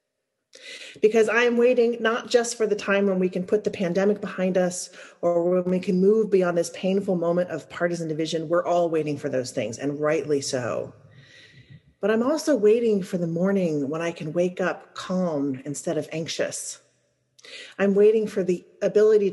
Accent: American